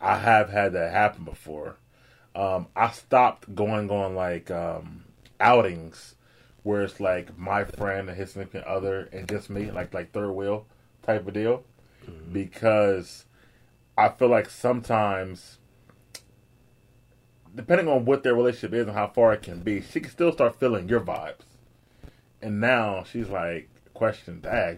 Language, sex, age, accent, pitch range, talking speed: English, male, 30-49, American, 95-120 Hz, 155 wpm